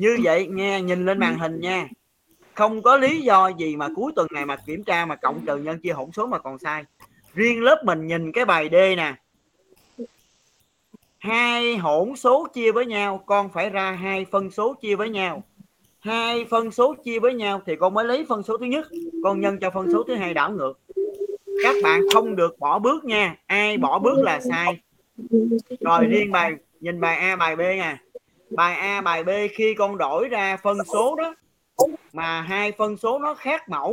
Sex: male